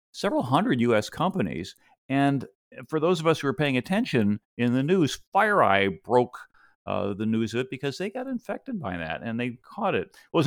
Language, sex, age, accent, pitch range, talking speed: English, male, 50-69, American, 100-145 Hz, 200 wpm